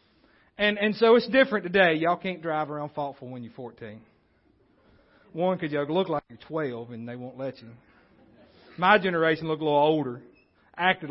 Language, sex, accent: English, male, American